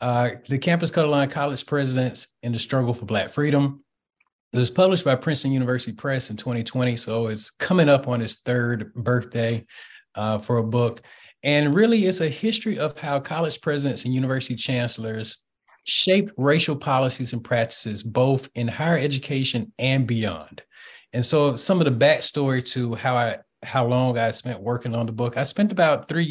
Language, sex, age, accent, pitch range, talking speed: English, male, 30-49, American, 115-140 Hz, 180 wpm